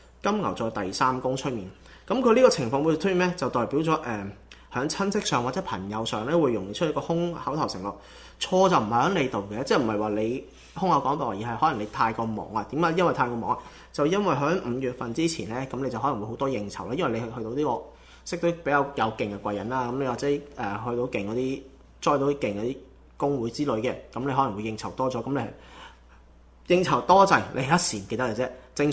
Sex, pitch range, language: male, 110-155 Hz, Chinese